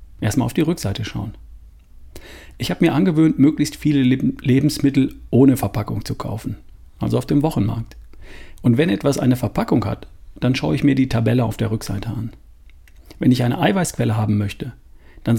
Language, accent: German, German